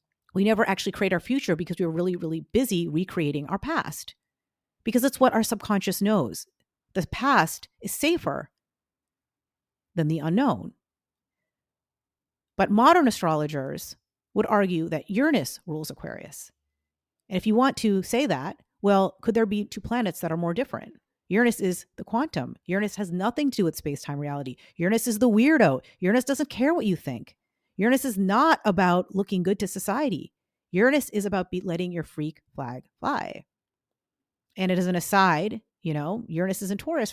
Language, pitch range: English, 160-220 Hz